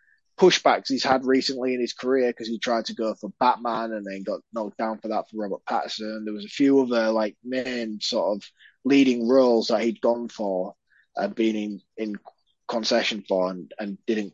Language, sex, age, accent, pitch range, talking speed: English, male, 20-39, British, 110-125 Hz, 200 wpm